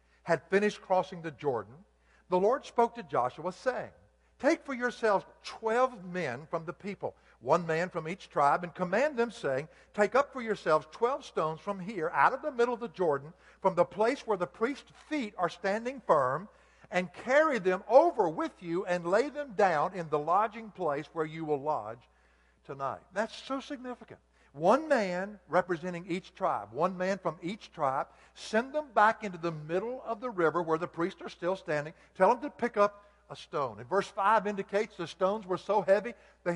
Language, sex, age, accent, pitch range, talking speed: English, male, 60-79, American, 165-215 Hz, 190 wpm